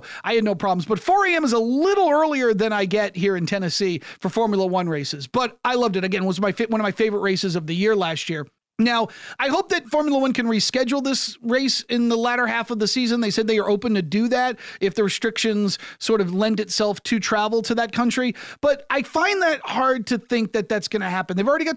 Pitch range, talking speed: 200-245 Hz, 250 wpm